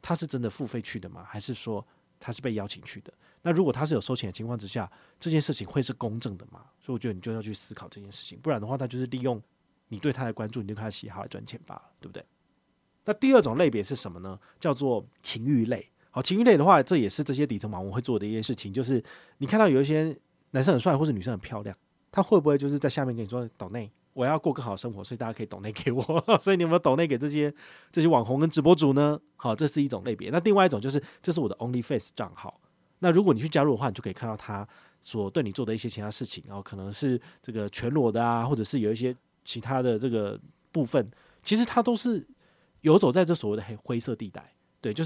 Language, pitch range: Chinese, 110-150 Hz